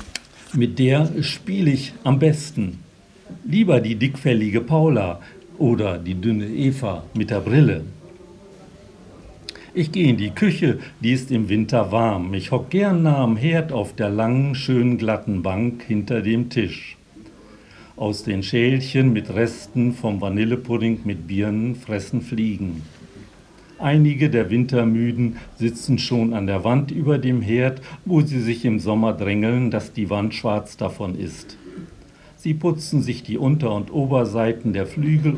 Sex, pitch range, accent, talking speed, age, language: male, 105-140 Hz, German, 145 wpm, 60-79, German